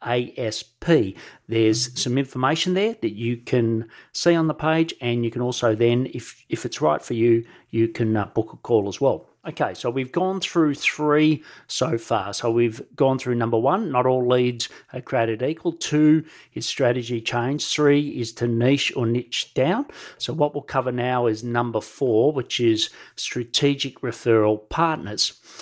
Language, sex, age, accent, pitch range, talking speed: English, male, 40-59, Australian, 115-150 Hz, 175 wpm